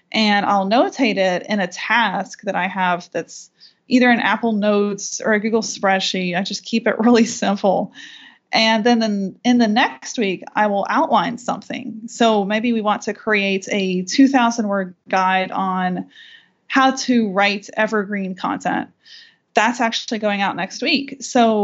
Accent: American